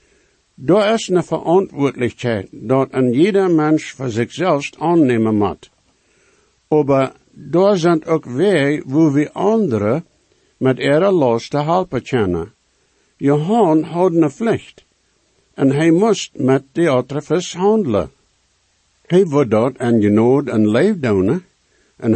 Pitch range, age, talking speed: 120-165 Hz, 60-79, 125 wpm